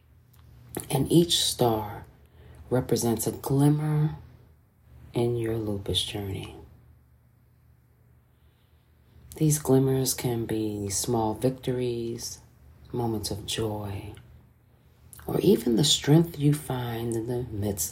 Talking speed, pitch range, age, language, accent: 95 wpm, 100-120 Hz, 40-59, English, American